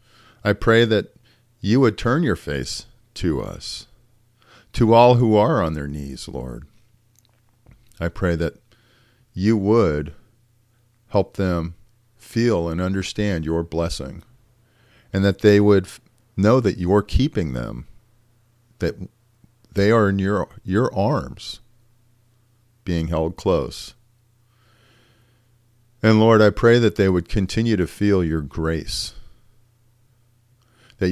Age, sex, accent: 50-69, male, American